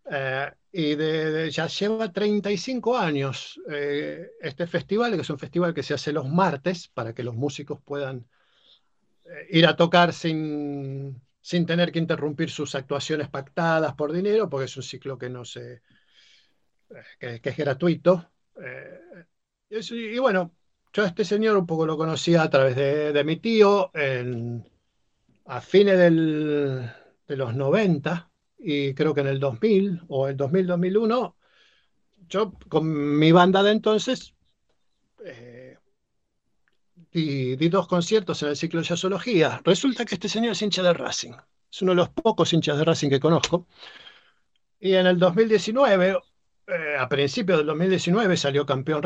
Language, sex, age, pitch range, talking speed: Spanish, male, 60-79, 145-190 Hz, 160 wpm